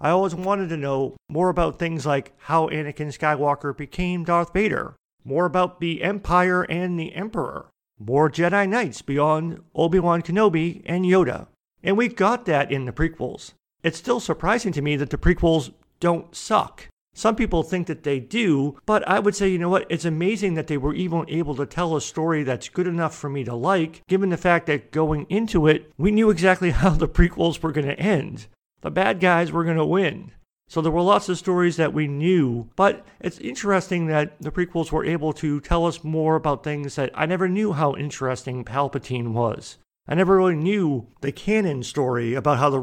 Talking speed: 200 wpm